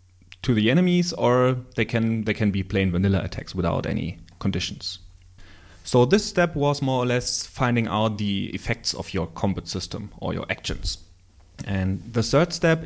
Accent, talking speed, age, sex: German, 175 wpm, 30-49, male